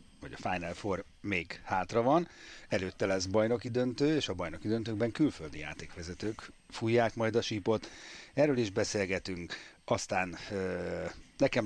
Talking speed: 140 wpm